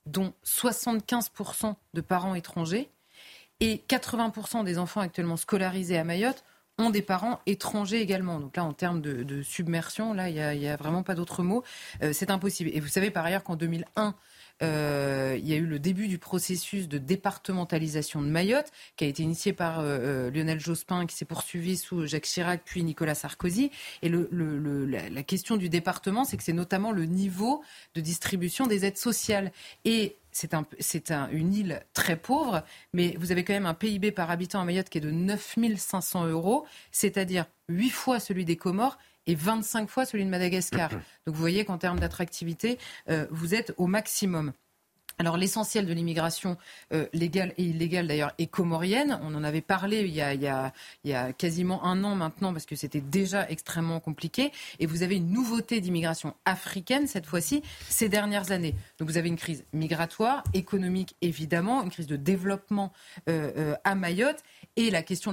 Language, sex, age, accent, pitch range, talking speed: French, female, 30-49, French, 165-205 Hz, 190 wpm